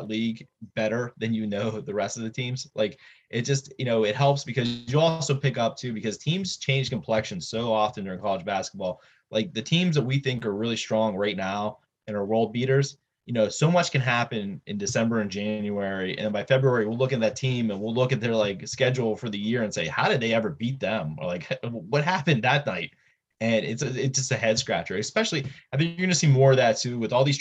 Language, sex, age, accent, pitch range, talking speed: English, male, 20-39, American, 110-135 Hz, 240 wpm